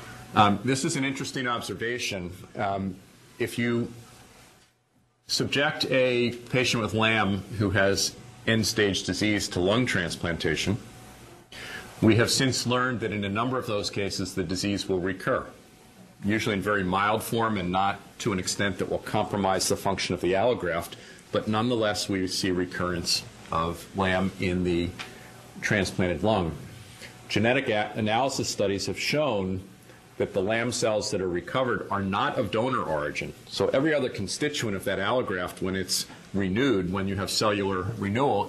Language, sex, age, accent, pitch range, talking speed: English, male, 40-59, American, 95-115 Hz, 150 wpm